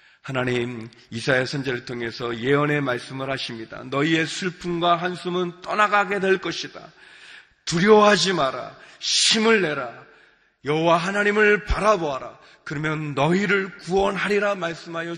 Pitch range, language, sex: 115-175 Hz, Korean, male